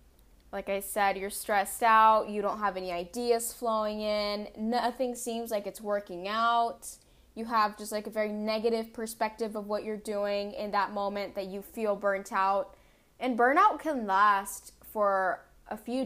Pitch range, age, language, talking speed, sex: 200-240 Hz, 10-29, English, 170 wpm, female